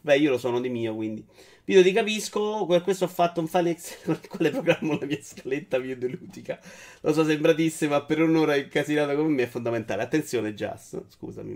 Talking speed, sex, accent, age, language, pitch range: 200 wpm, male, native, 30-49, Italian, 105-160 Hz